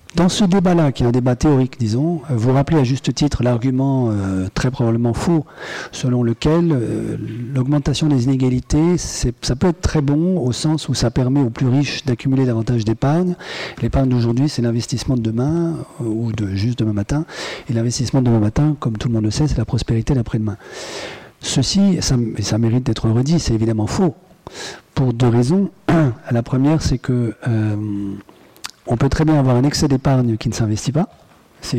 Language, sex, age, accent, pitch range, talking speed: French, male, 40-59, French, 115-150 Hz, 190 wpm